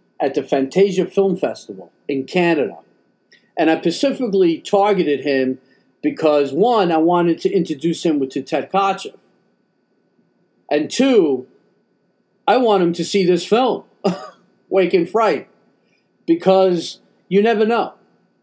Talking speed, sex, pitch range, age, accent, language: 125 wpm, male, 135-180 Hz, 40-59, American, English